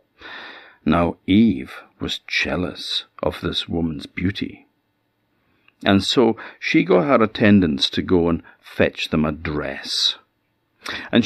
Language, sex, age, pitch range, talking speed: English, male, 50-69, 80-100 Hz, 115 wpm